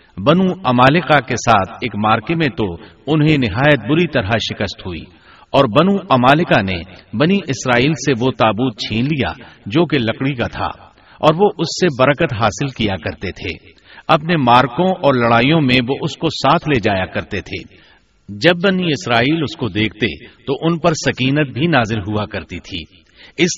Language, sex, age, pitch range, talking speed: Urdu, male, 50-69, 110-160 Hz, 175 wpm